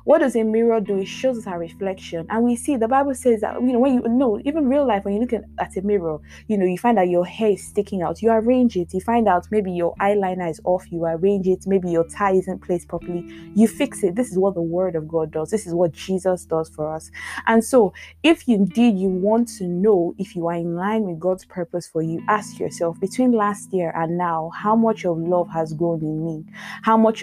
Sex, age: female, 20-39